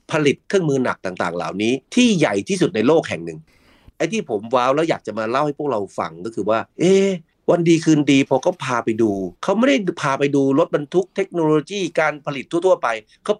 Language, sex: Thai, male